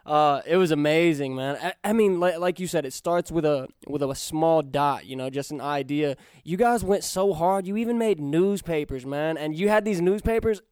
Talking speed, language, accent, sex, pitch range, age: 230 wpm, English, American, male, 145-175 Hz, 20-39